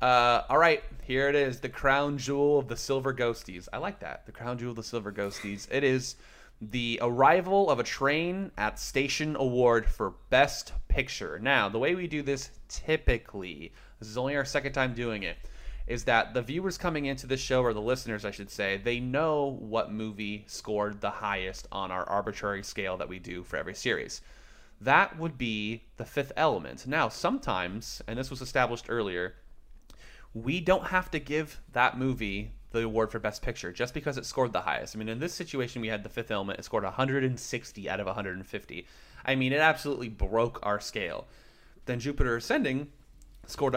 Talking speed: 190 wpm